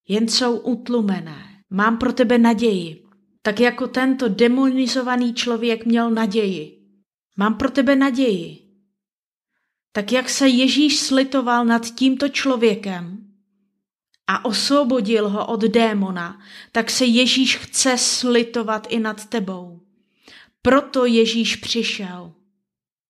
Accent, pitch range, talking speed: native, 200-250 Hz, 110 wpm